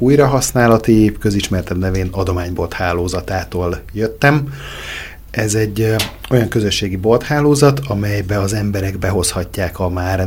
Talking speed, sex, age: 95 wpm, male, 30-49